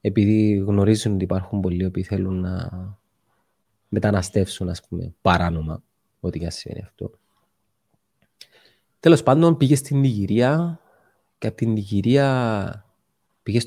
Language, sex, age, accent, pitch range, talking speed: Greek, male, 30-49, Spanish, 100-120 Hz, 115 wpm